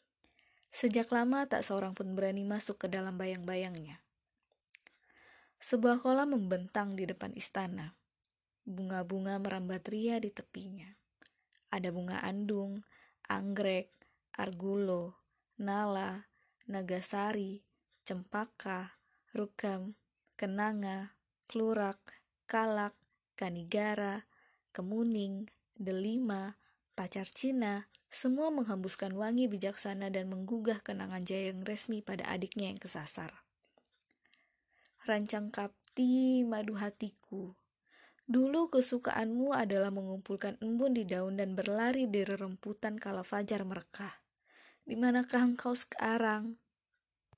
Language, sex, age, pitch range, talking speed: Indonesian, female, 20-39, 190-230 Hz, 90 wpm